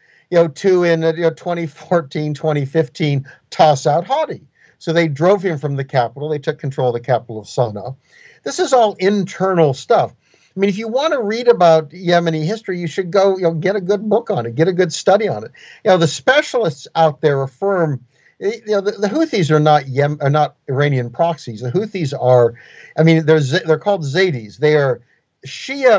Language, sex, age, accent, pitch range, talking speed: English, male, 50-69, American, 145-185 Hz, 205 wpm